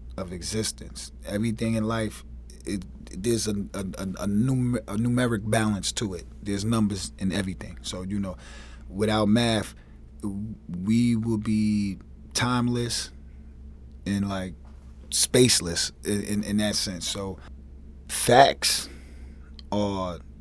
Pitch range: 75-115 Hz